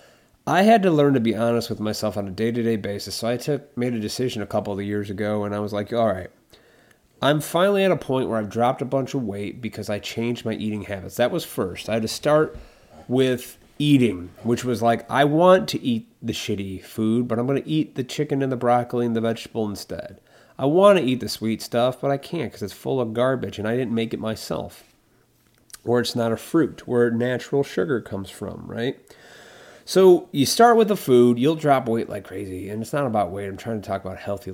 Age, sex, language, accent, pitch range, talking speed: 30-49, male, English, American, 105-135 Hz, 235 wpm